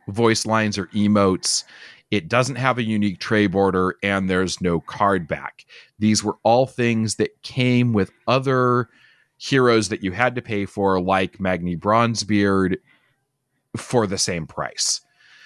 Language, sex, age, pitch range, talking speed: English, male, 30-49, 100-125 Hz, 150 wpm